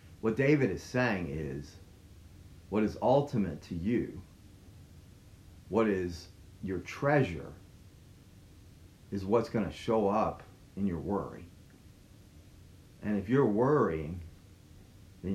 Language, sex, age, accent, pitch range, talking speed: English, male, 40-59, American, 85-100 Hz, 110 wpm